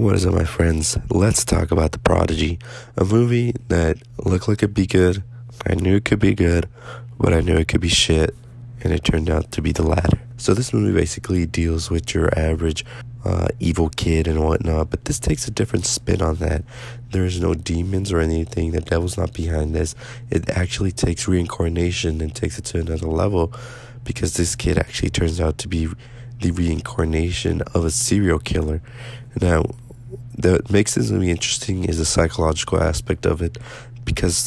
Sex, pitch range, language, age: male, 80-115 Hz, English, 20-39